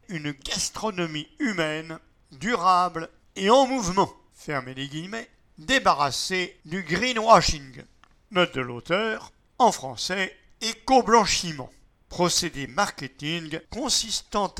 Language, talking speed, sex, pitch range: English, 90 wpm, male, 155-215 Hz